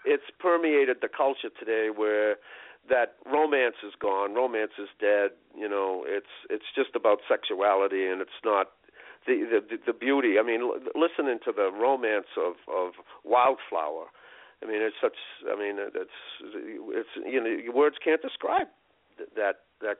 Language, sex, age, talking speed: English, male, 50-69, 155 wpm